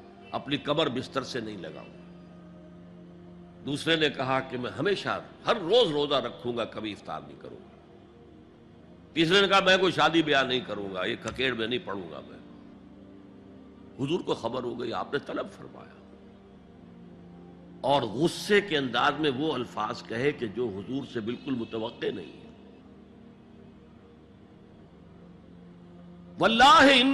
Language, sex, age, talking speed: Urdu, male, 60-79, 140 wpm